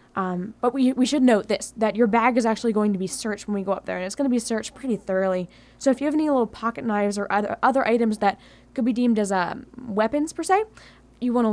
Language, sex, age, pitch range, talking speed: English, female, 10-29, 205-290 Hz, 275 wpm